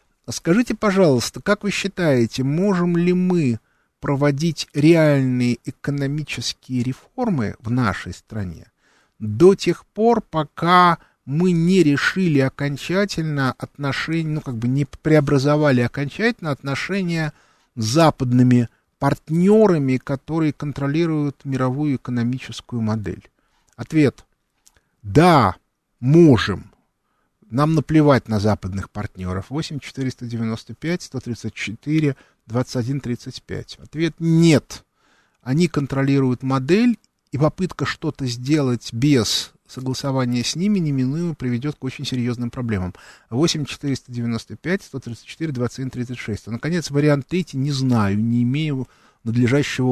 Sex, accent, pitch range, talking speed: male, native, 120-155 Hz, 95 wpm